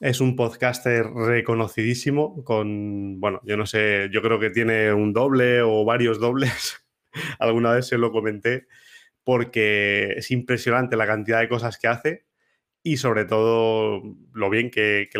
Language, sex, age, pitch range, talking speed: Spanish, male, 20-39, 110-125 Hz, 155 wpm